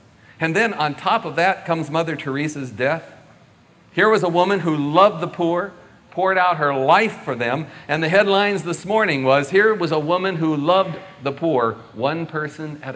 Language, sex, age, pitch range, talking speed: English, male, 50-69, 135-185 Hz, 190 wpm